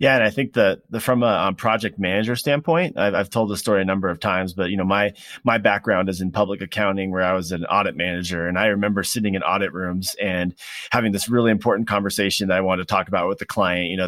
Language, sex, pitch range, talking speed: English, male, 90-110 Hz, 260 wpm